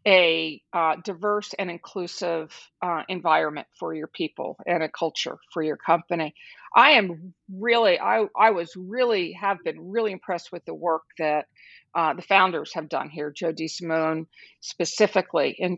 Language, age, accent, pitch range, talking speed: English, 50-69, American, 165-220 Hz, 160 wpm